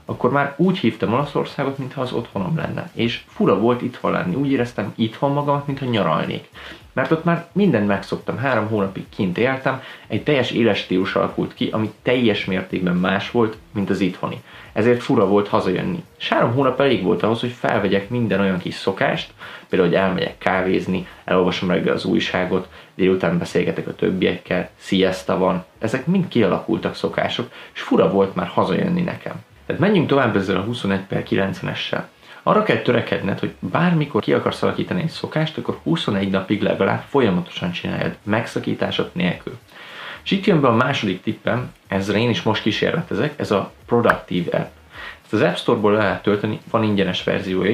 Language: Hungarian